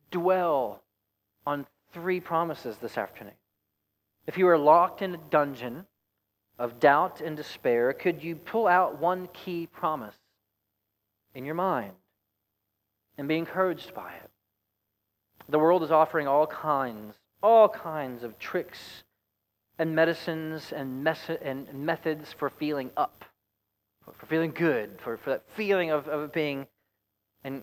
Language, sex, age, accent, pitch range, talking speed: English, male, 40-59, American, 105-160 Hz, 135 wpm